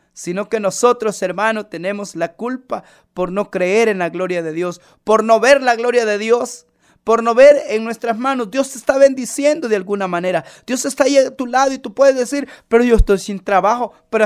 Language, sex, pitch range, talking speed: Spanish, male, 220-280 Hz, 215 wpm